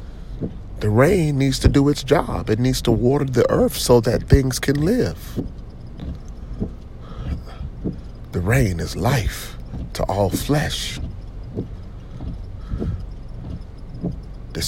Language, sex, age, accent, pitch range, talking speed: English, male, 40-59, American, 80-120 Hz, 105 wpm